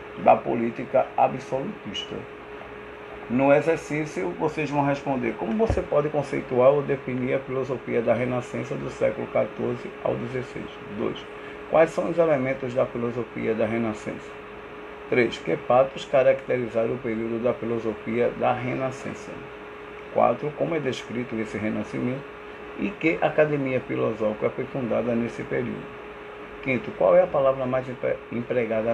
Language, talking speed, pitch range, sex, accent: Portuguese, 130 wpm, 115-135 Hz, male, Brazilian